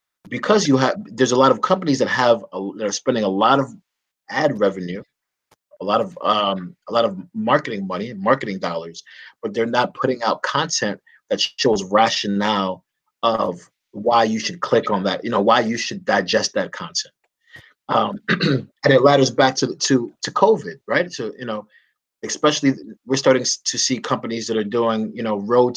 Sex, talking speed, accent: male, 185 wpm, American